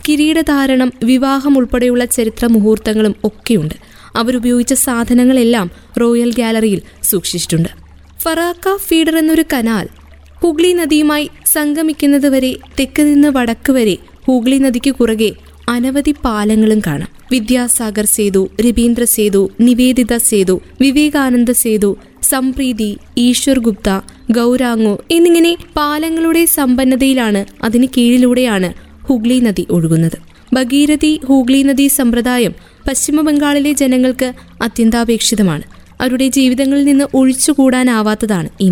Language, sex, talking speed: Malayalam, female, 85 wpm